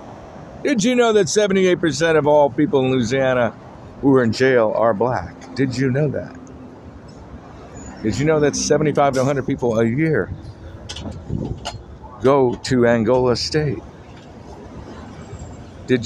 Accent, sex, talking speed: American, male, 130 wpm